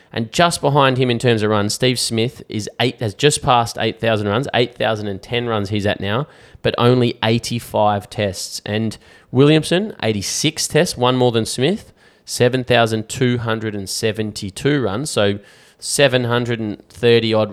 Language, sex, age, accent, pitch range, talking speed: English, male, 20-39, Australian, 105-125 Hz, 130 wpm